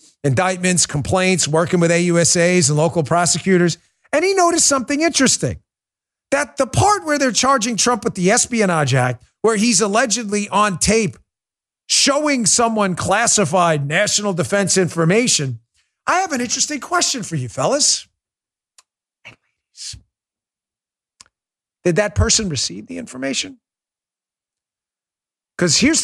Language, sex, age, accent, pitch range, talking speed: English, male, 50-69, American, 160-225 Hz, 120 wpm